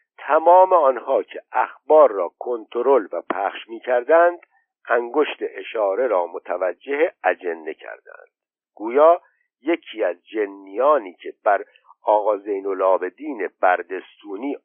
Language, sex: Persian, male